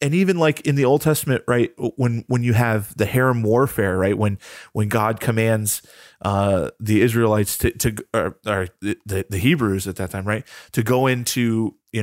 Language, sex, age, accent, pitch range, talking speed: English, male, 20-39, American, 110-150 Hz, 190 wpm